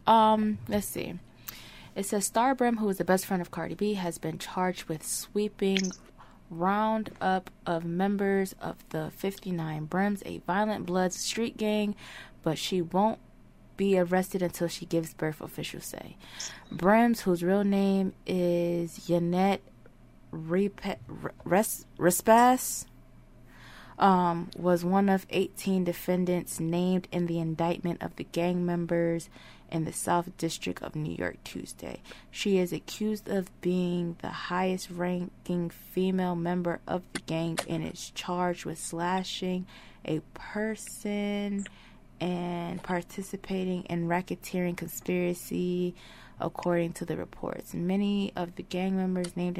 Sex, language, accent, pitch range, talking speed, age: female, English, American, 170-195 Hz, 130 wpm, 20-39